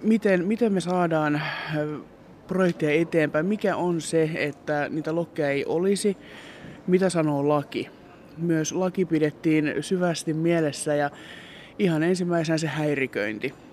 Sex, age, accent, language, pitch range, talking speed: male, 20-39, native, Finnish, 150-170 Hz, 120 wpm